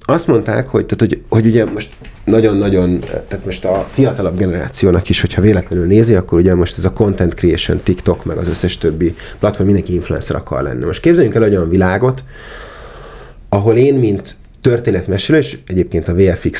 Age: 30-49